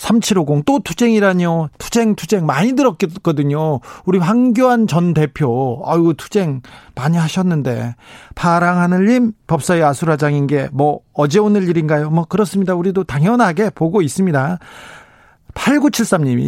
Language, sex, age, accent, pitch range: Korean, male, 40-59, native, 135-190 Hz